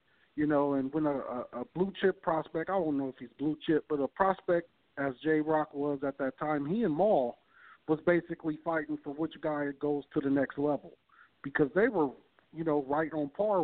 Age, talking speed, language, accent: 50-69, 200 wpm, English, American